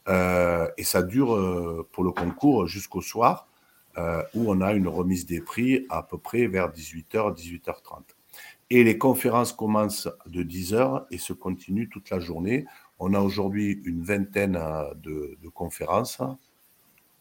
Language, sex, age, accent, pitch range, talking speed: French, male, 50-69, French, 80-105 Hz, 150 wpm